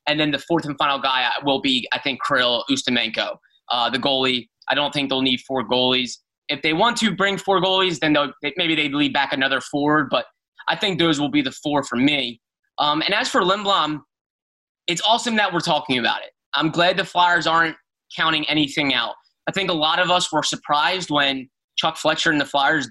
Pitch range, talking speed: 145-175 Hz, 215 wpm